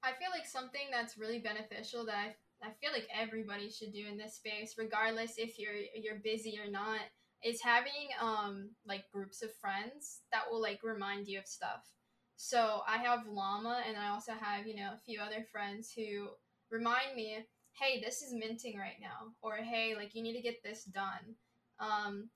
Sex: female